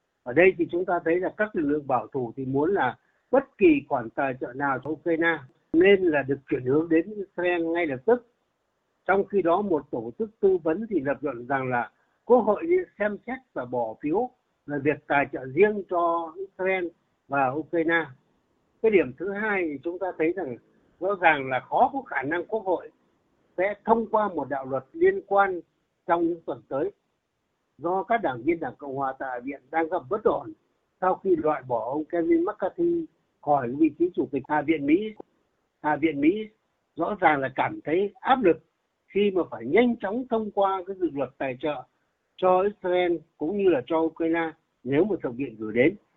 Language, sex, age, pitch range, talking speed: Vietnamese, male, 60-79, 150-205 Hz, 200 wpm